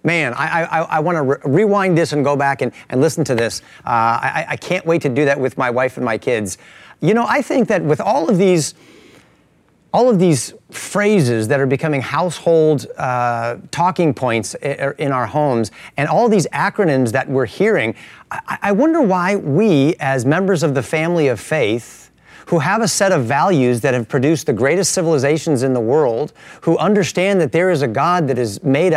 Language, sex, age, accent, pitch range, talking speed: English, male, 40-59, American, 135-190 Hz, 205 wpm